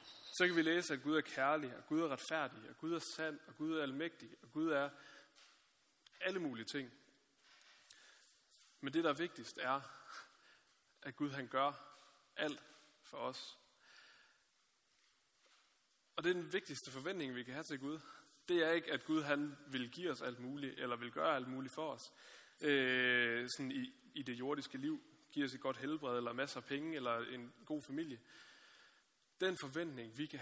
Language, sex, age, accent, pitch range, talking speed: Danish, male, 30-49, native, 130-165 Hz, 180 wpm